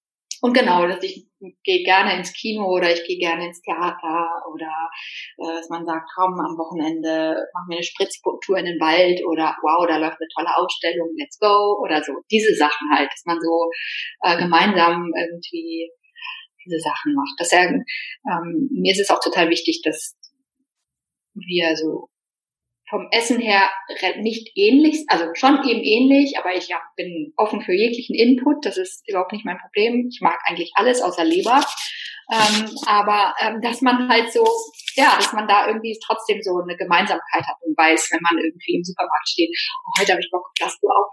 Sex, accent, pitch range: female, German, 170-240 Hz